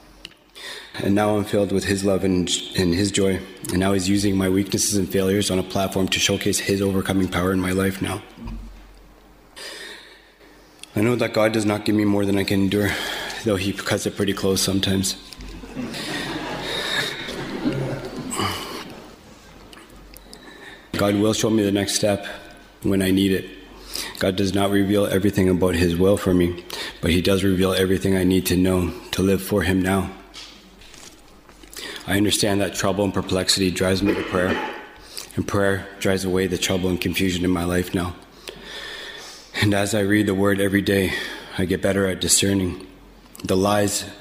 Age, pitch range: 20-39, 95-100 Hz